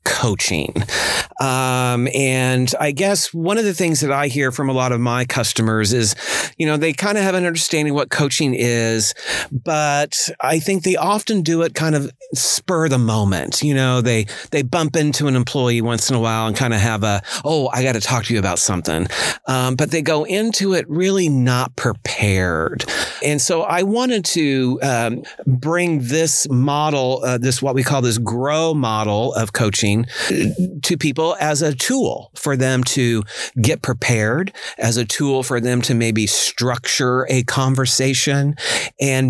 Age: 40-59